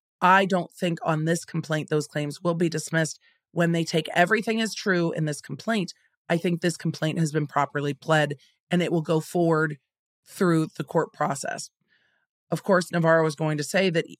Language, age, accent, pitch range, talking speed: English, 40-59, American, 150-190 Hz, 190 wpm